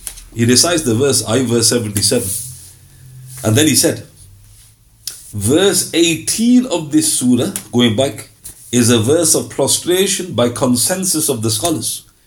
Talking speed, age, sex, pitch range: 135 wpm, 50-69, male, 115-160 Hz